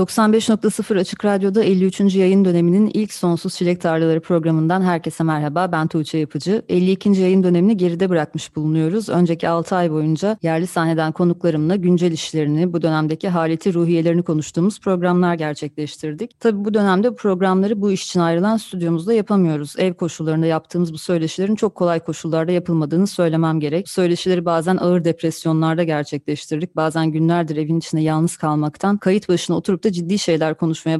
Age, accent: 30-49, native